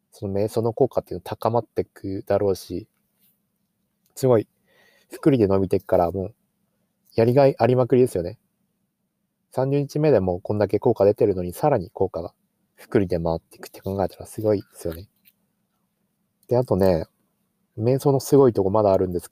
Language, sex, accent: Japanese, male, native